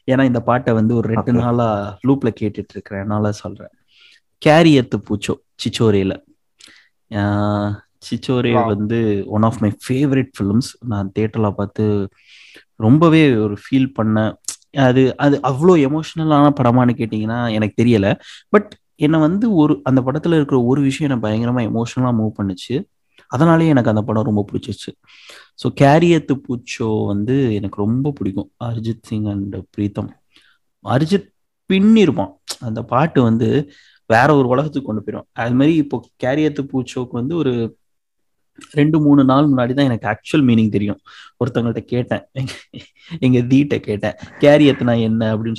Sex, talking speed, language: male, 135 wpm, Tamil